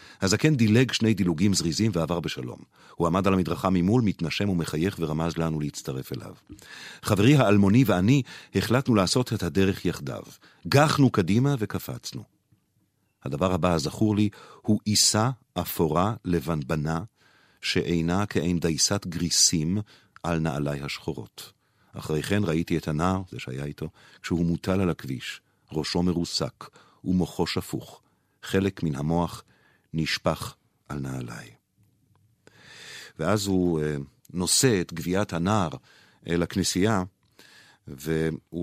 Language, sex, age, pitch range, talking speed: Hebrew, male, 50-69, 80-105 Hz, 120 wpm